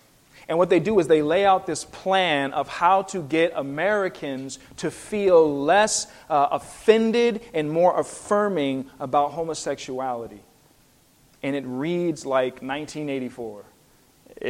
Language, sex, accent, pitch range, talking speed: English, male, American, 135-180 Hz, 125 wpm